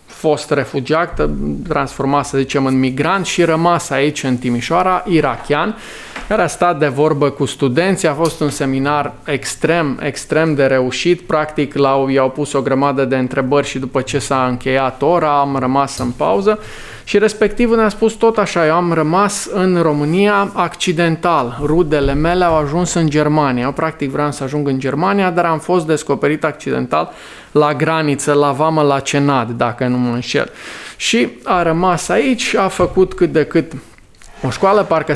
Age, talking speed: 20-39, 170 wpm